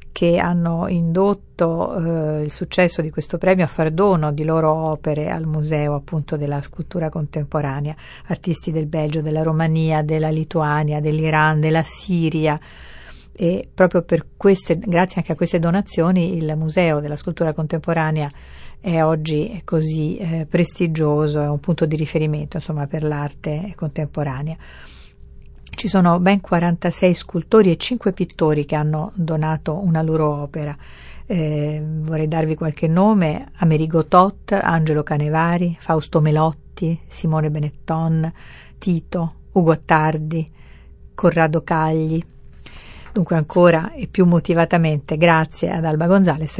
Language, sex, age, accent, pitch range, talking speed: Italian, female, 50-69, native, 155-175 Hz, 130 wpm